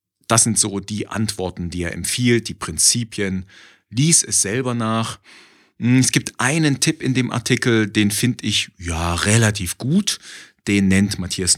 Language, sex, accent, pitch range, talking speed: German, male, German, 90-115 Hz, 155 wpm